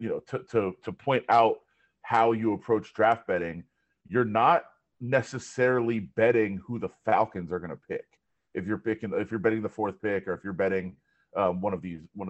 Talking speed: 200 wpm